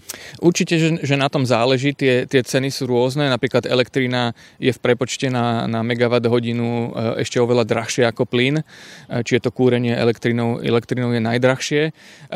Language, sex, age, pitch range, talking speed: Slovak, male, 30-49, 120-135 Hz, 150 wpm